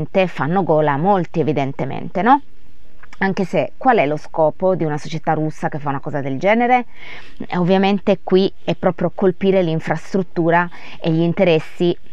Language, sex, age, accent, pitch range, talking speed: Italian, female, 20-39, native, 165-245 Hz, 155 wpm